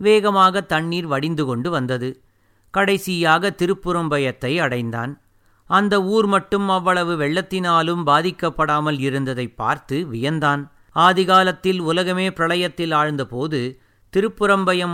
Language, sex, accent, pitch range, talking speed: Tamil, male, native, 145-190 Hz, 90 wpm